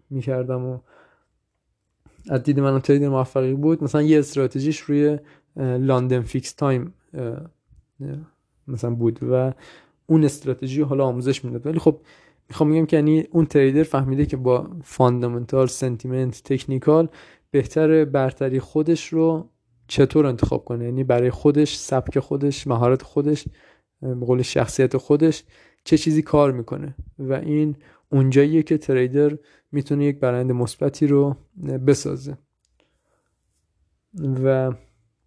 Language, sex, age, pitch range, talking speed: Persian, male, 20-39, 130-145 Hz, 120 wpm